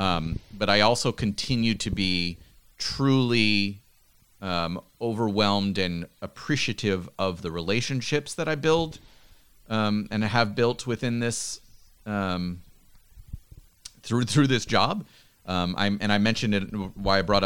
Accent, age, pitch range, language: American, 30-49, 95-110 Hz, English